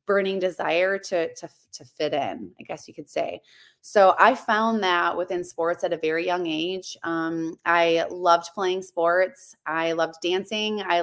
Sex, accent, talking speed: female, American, 175 wpm